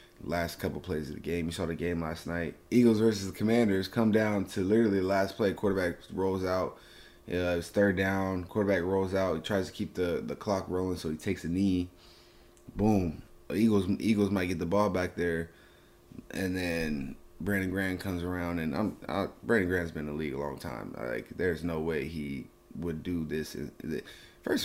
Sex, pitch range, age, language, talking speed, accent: male, 85-105 Hz, 20-39, English, 205 wpm, American